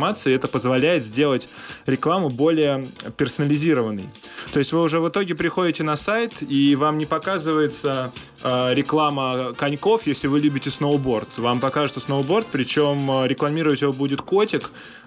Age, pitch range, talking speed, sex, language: 20-39, 120-150 Hz, 130 wpm, male, Russian